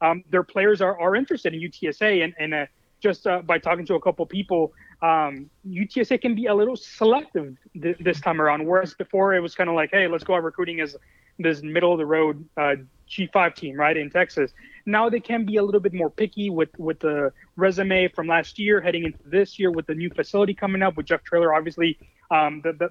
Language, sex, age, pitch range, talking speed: English, male, 30-49, 160-200 Hz, 230 wpm